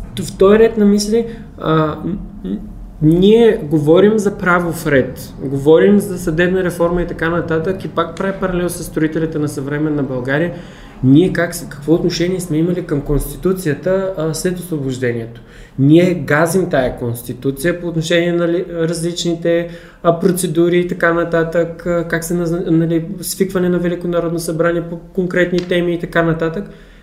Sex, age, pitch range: male, 20-39, 150-180 Hz